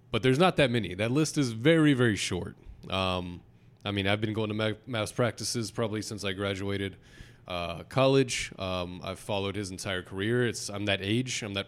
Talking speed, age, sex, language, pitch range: 195 wpm, 20-39, male, English, 100-125 Hz